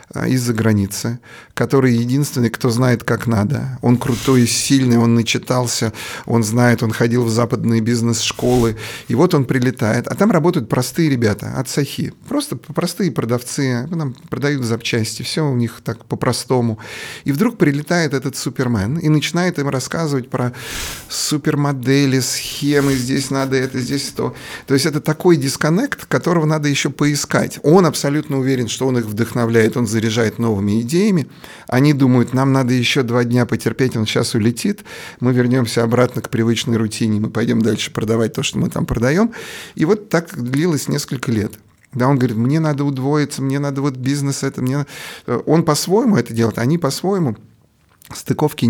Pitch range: 115-145 Hz